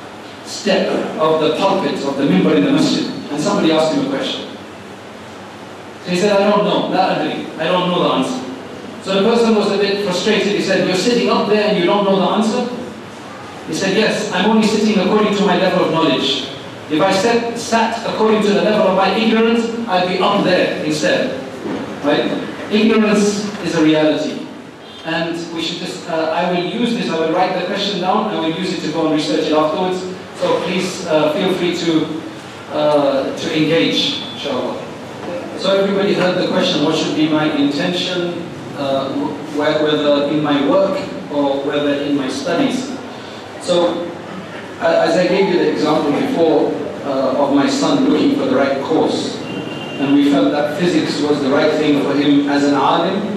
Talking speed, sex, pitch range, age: 190 wpm, male, 155-205 Hz, 40-59